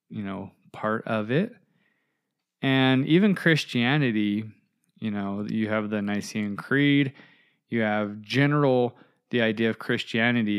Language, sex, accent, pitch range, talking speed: English, male, American, 105-140 Hz, 125 wpm